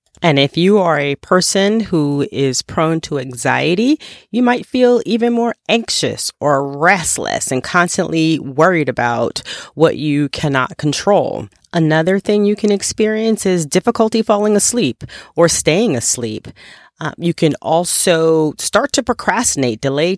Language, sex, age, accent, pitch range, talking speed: English, female, 30-49, American, 130-185 Hz, 140 wpm